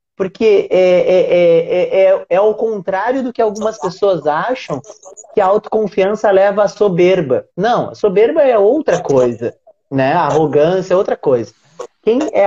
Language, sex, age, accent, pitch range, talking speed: Portuguese, male, 30-49, Brazilian, 175-225 Hz, 135 wpm